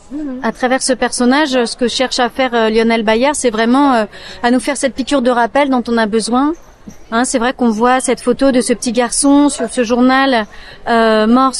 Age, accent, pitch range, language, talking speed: 40-59, French, 235-275 Hz, English, 195 wpm